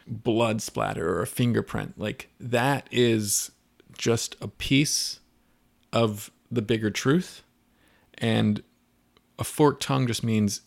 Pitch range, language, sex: 110-130 Hz, English, male